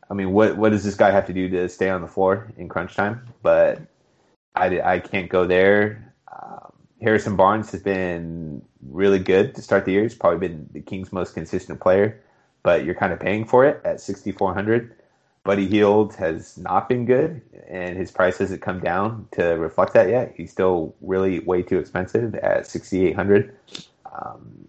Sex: male